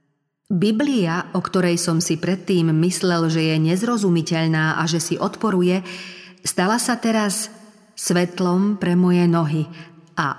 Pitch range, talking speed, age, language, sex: 160-200 Hz, 125 wpm, 40-59, Slovak, female